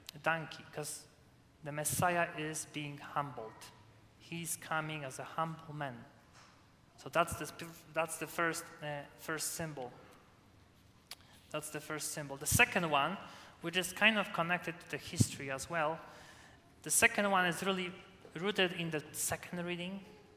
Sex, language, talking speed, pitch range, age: male, English, 145 wpm, 150-180 Hz, 20-39